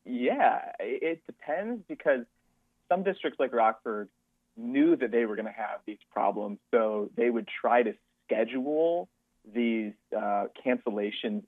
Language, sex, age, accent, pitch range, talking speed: English, male, 30-49, American, 110-125 Hz, 135 wpm